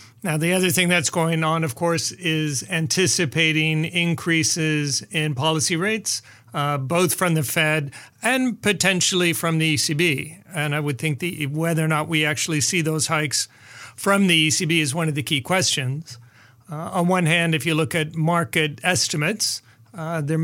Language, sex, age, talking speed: English, male, 40-59, 170 wpm